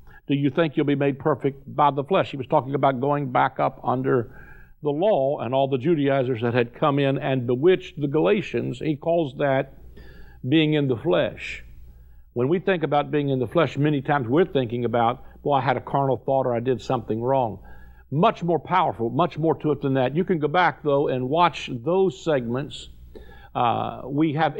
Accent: American